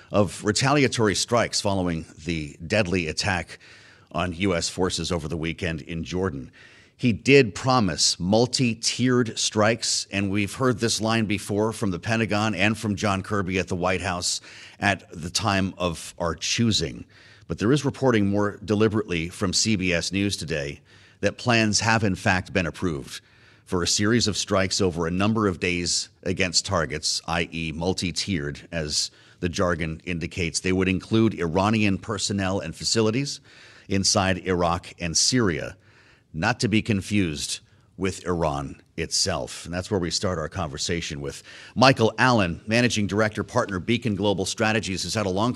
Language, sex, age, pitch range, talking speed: English, male, 30-49, 90-110 Hz, 155 wpm